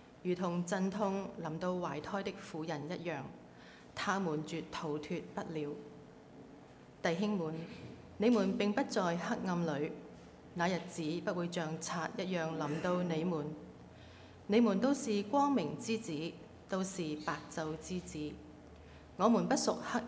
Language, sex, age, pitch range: Chinese, female, 20-39, 150-190 Hz